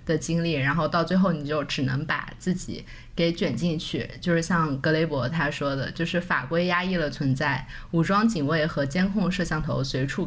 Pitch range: 150-190 Hz